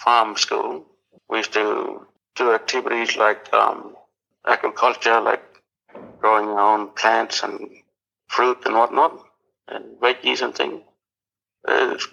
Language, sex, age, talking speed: English, male, 60-79, 115 wpm